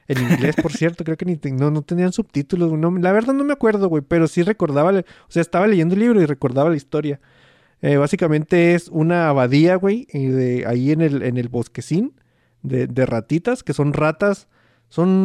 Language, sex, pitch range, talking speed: Spanish, male, 130-170 Hz, 205 wpm